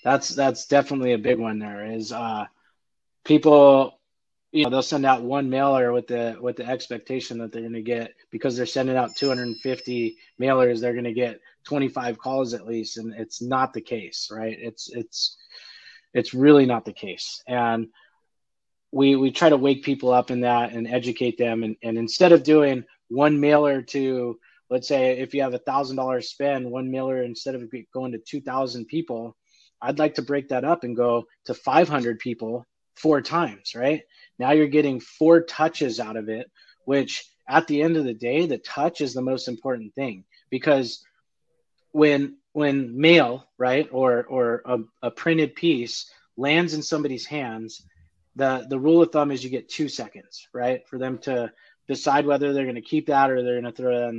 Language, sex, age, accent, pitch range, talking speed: English, male, 20-39, American, 120-145 Hz, 190 wpm